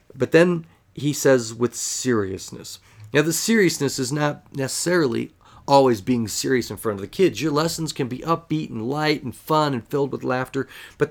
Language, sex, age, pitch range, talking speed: English, male, 40-59, 115-140 Hz, 185 wpm